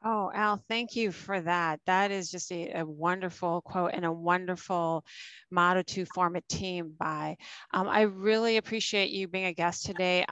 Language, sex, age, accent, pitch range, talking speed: English, female, 30-49, American, 170-190 Hz, 180 wpm